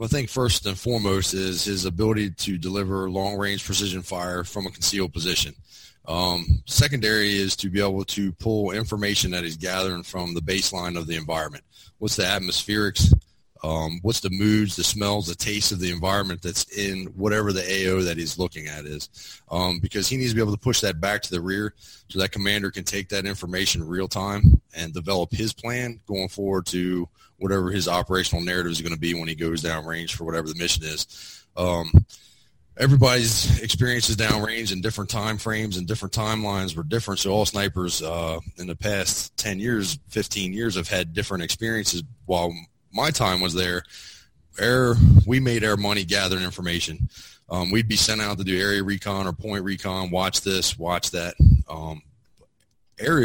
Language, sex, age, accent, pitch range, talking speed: English, male, 30-49, American, 90-105 Hz, 185 wpm